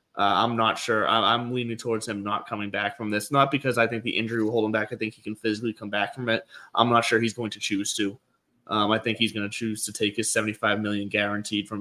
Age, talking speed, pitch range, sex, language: 20-39, 275 wpm, 105-125 Hz, male, English